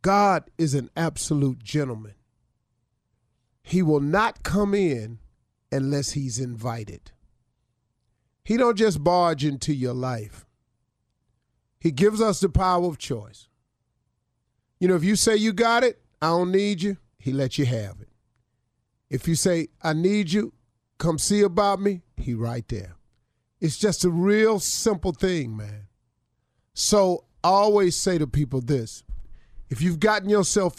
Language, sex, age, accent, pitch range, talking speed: English, male, 40-59, American, 120-170 Hz, 145 wpm